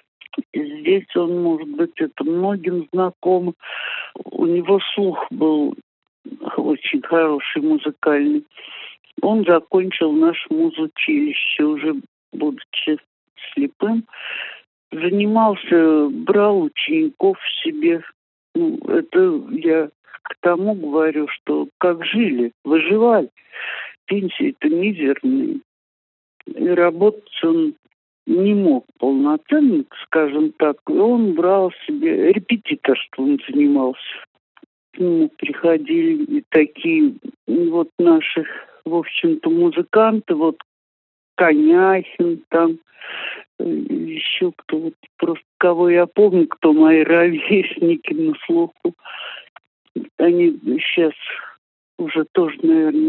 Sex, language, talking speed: male, Russian, 95 wpm